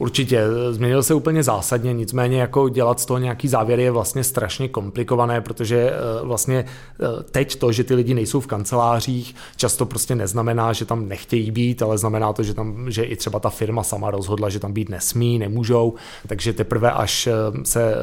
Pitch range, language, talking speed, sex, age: 105-120 Hz, Czech, 180 wpm, male, 30-49